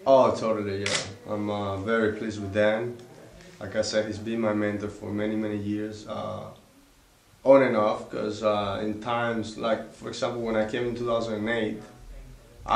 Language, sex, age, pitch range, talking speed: English, male, 20-39, 105-120 Hz, 170 wpm